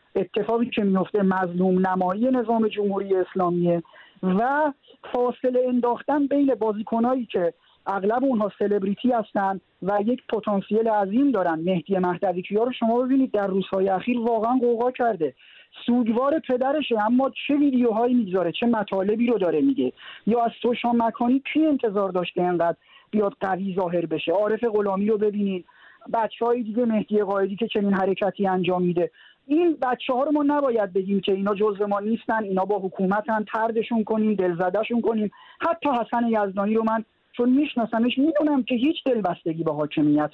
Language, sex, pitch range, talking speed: Persian, male, 190-240 Hz, 150 wpm